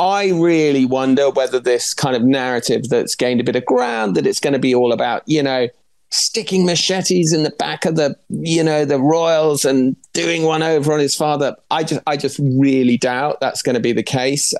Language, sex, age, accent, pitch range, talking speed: English, male, 30-49, British, 130-165 Hz, 220 wpm